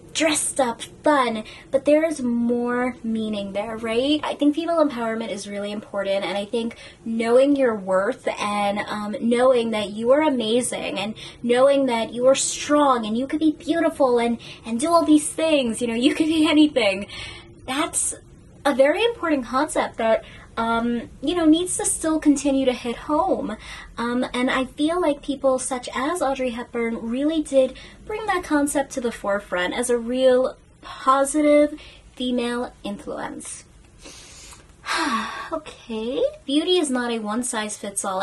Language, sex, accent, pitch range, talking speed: English, female, American, 230-300 Hz, 155 wpm